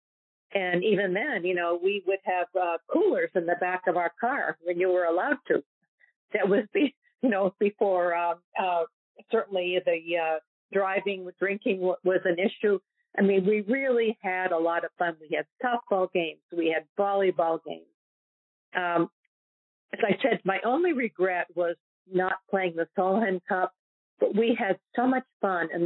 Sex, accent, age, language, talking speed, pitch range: female, American, 50-69, English, 170 wpm, 170-200 Hz